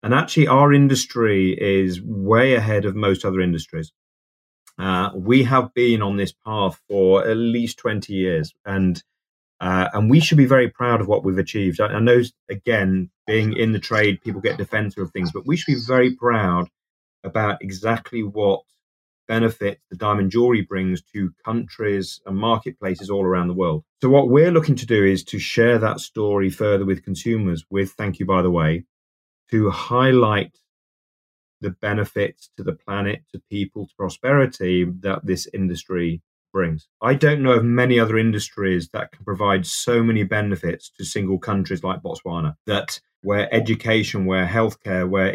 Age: 30-49